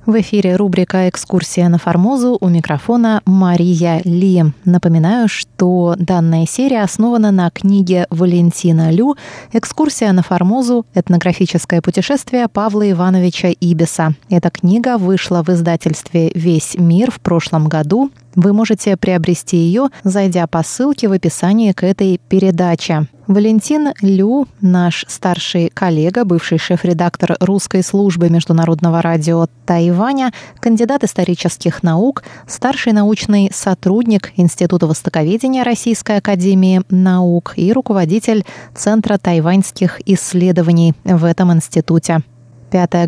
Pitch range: 170-215 Hz